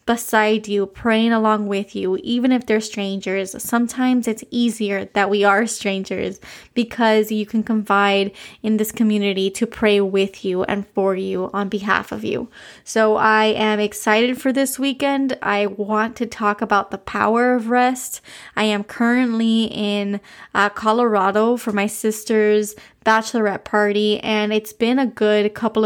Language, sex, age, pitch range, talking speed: English, female, 20-39, 205-230 Hz, 160 wpm